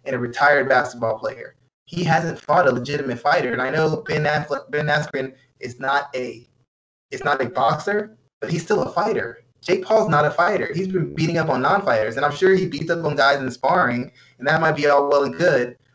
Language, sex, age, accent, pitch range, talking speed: English, male, 20-39, American, 130-165 Hz, 220 wpm